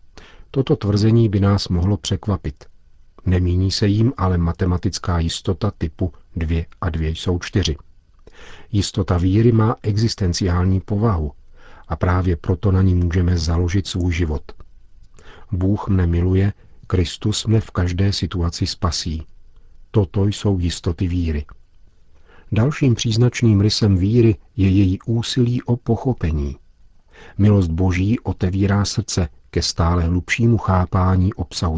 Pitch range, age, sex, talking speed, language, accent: 85-105 Hz, 50-69, male, 120 wpm, Czech, native